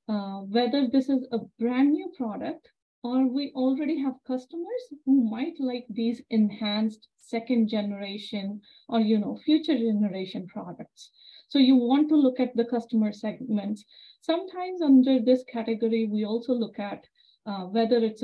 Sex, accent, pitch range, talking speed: female, Indian, 215-265 Hz, 150 wpm